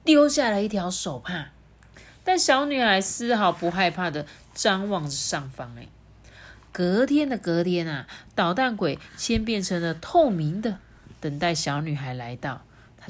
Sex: female